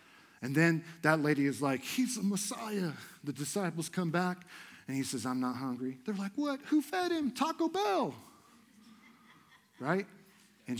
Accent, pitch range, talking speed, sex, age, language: American, 130-175 Hz, 160 wpm, male, 50-69, English